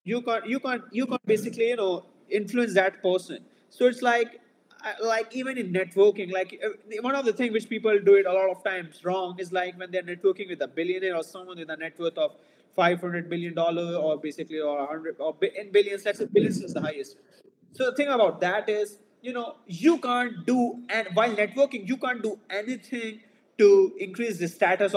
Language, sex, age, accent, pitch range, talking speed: English, male, 30-49, Indian, 190-240 Hz, 205 wpm